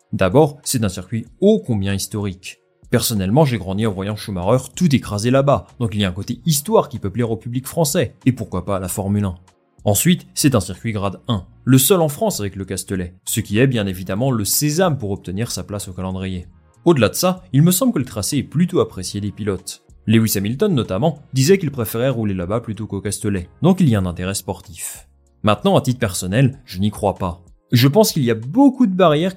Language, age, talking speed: French, 30-49, 225 wpm